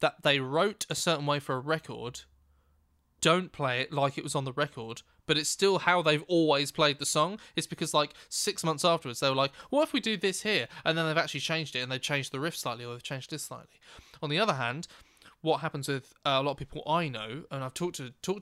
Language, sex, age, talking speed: English, male, 20-39, 255 wpm